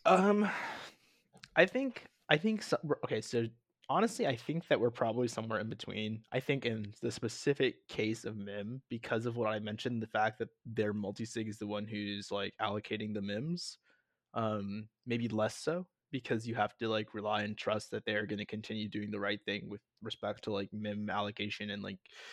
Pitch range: 105-120 Hz